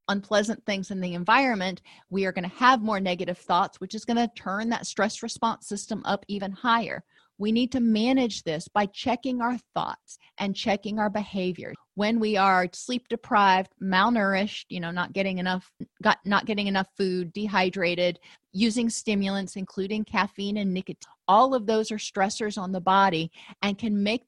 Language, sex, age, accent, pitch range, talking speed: English, female, 40-59, American, 185-230 Hz, 180 wpm